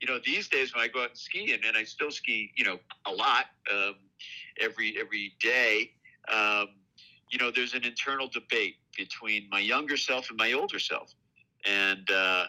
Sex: male